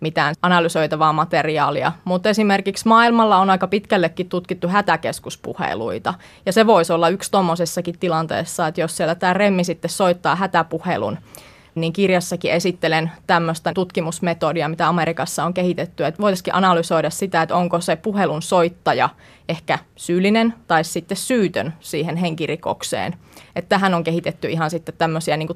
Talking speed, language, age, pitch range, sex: 135 wpm, Finnish, 20-39, 160-185 Hz, female